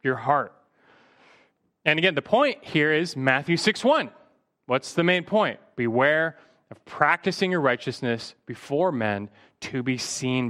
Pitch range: 125-175 Hz